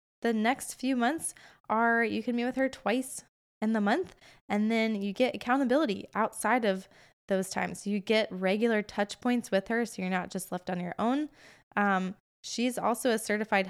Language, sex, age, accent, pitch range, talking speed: English, female, 20-39, American, 190-240 Hz, 190 wpm